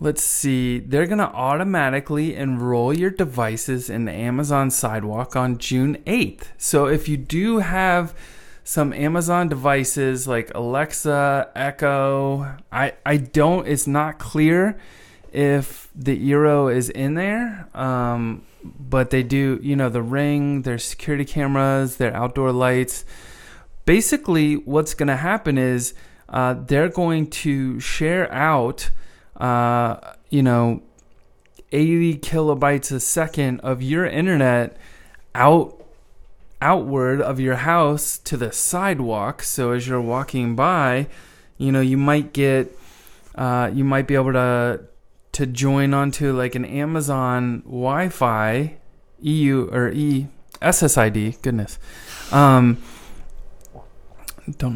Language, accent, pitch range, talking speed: English, American, 125-155 Hz, 120 wpm